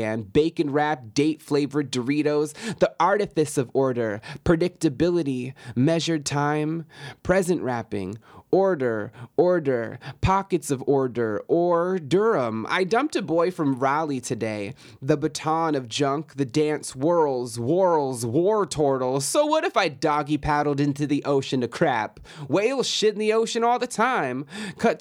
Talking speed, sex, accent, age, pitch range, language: 135 wpm, male, American, 30-49, 140-185 Hz, English